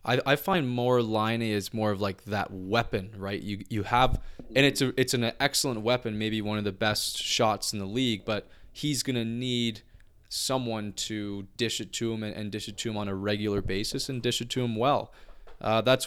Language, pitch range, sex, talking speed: English, 105-120 Hz, male, 225 wpm